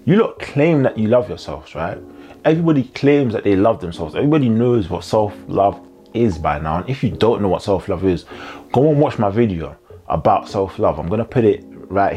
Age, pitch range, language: 20-39, 95-125 Hz, English